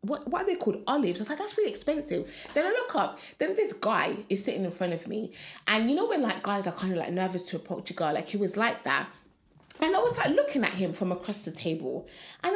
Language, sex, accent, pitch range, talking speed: English, female, British, 185-270 Hz, 270 wpm